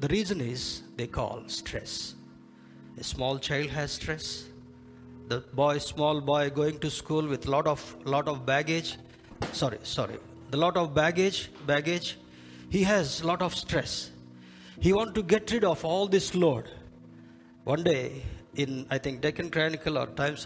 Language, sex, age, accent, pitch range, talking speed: Telugu, male, 50-69, native, 100-165 Hz, 160 wpm